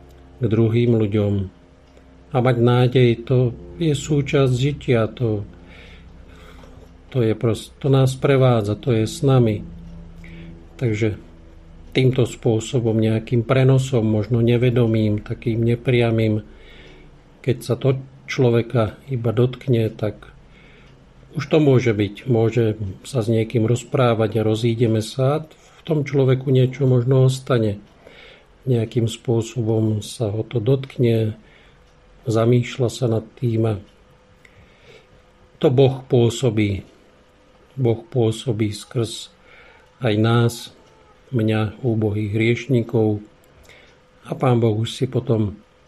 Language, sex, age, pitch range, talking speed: Slovak, male, 50-69, 110-125 Hz, 105 wpm